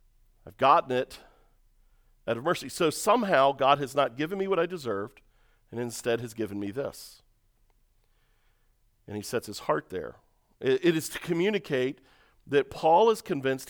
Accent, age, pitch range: American, 40-59, 115-160 Hz